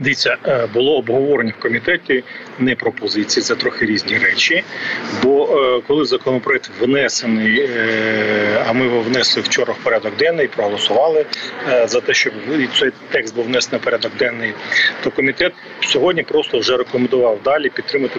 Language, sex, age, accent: Ukrainian, male, 40-59, native